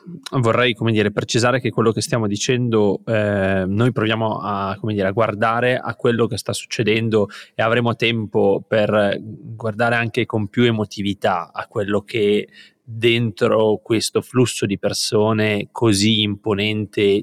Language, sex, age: Italian, male, 20-39